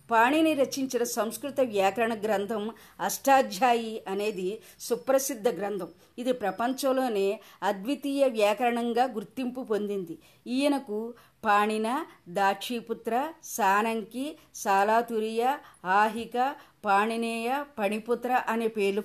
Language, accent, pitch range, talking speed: Telugu, native, 200-255 Hz, 80 wpm